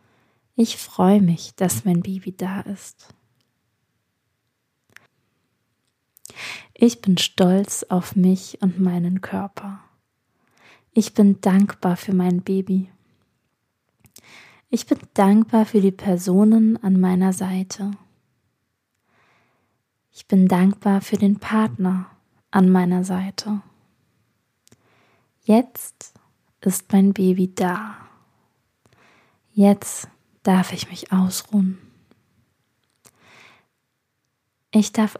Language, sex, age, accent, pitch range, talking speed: German, female, 20-39, German, 175-205 Hz, 90 wpm